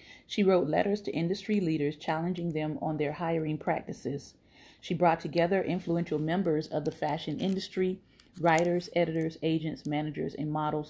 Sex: female